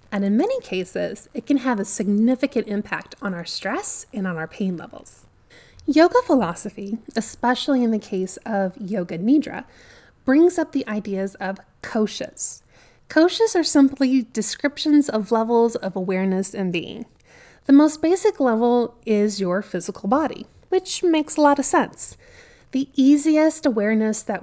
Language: English